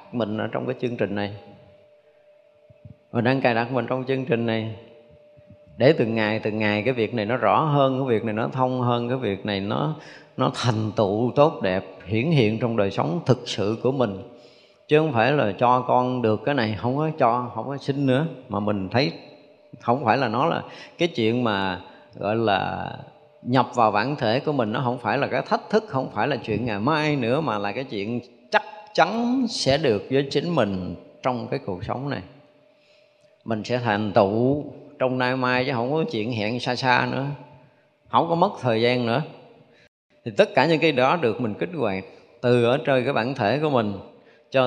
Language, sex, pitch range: Vietnamese, male, 110-145 Hz